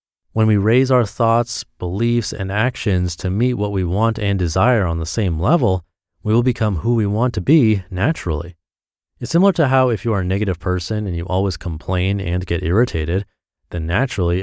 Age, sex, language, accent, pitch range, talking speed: 30-49, male, English, American, 90-120 Hz, 195 wpm